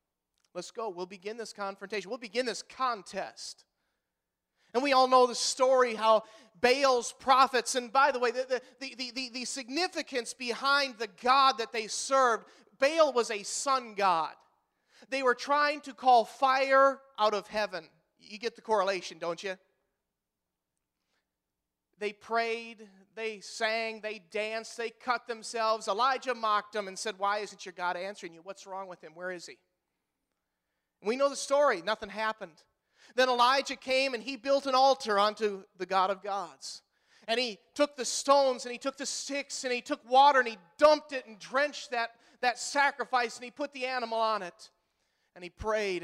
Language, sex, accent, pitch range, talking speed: English, male, American, 200-260 Hz, 170 wpm